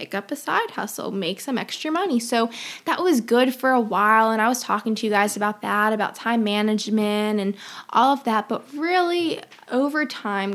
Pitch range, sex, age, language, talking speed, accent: 210-245 Hz, female, 10-29, English, 200 wpm, American